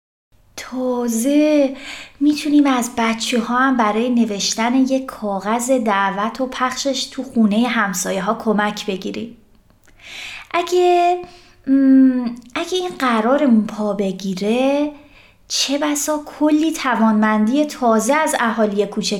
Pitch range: 205-270 Hz